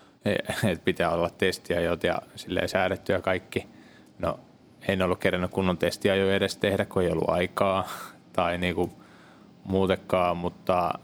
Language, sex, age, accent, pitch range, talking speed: Finnish, male, 20-39, native, 95-105 Hz, 130 wpm